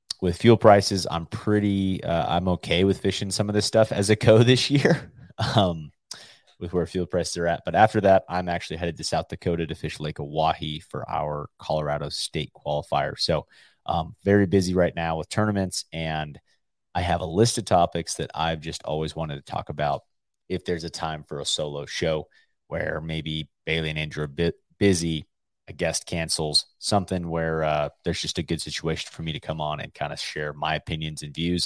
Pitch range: 80-100 Hz